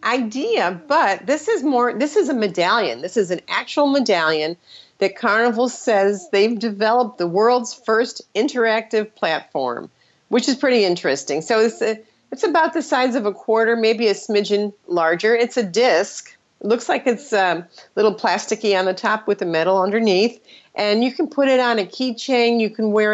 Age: 40-59